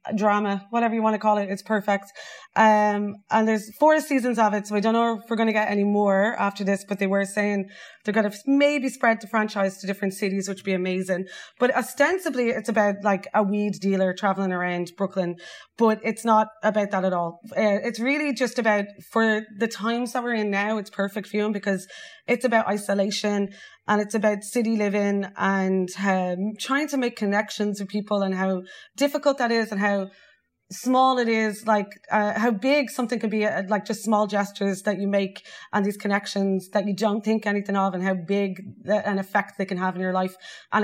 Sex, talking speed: female, 215 wpm